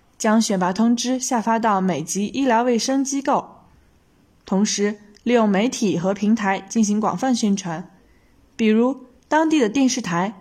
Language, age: Chinese, 20-39